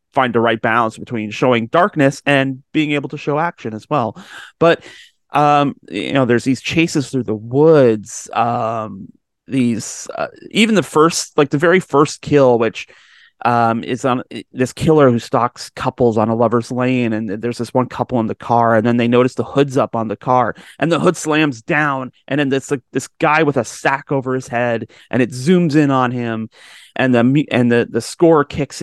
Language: English